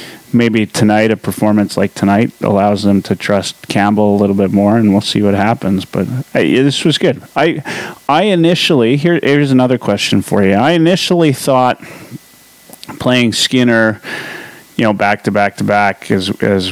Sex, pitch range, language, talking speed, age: male, 100-125 Hz, English, 170 wpm, 30-49